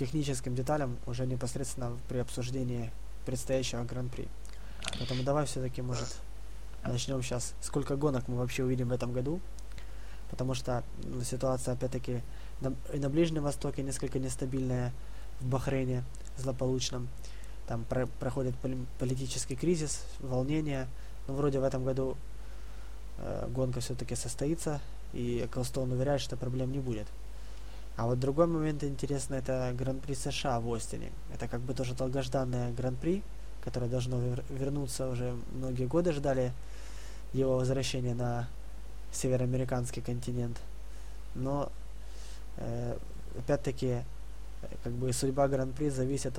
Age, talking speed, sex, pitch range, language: 20-39, 125 wpm, male, 120-135 Hz, Russian